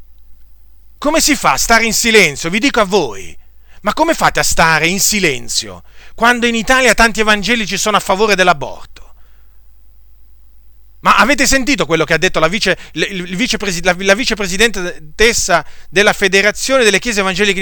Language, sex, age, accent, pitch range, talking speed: Italian, male, 40-59, native, 135-210 Hz, 145 wpm